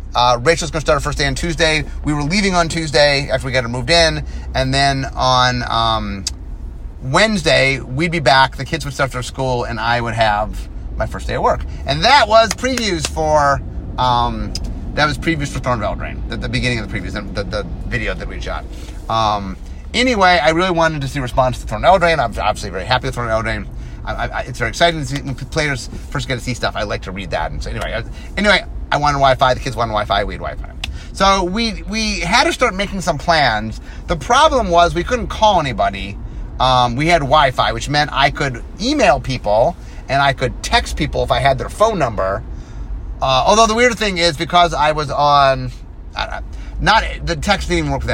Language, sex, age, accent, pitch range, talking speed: English, male, 30-49, American, 115-165 Hz, 220 wpm